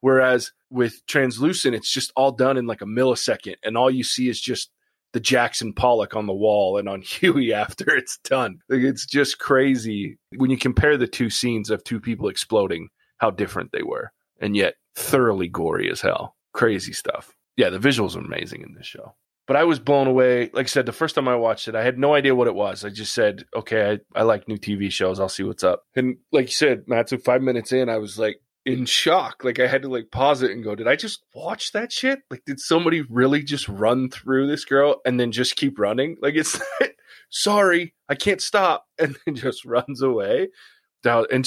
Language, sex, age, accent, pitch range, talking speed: English, male, 20-39, American, 115-140 Hz, 220 wpm